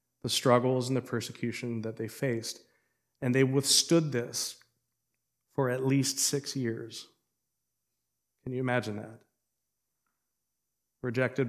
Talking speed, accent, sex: 115 wpm, American, male